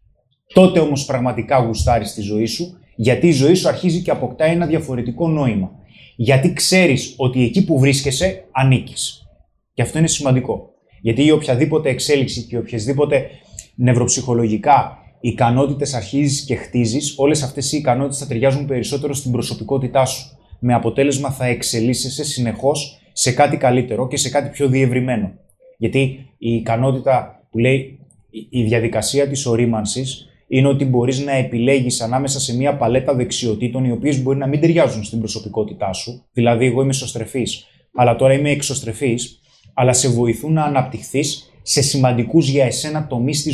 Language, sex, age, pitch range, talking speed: Greek, male, 20-39, 120-145 Hz, 150 wpm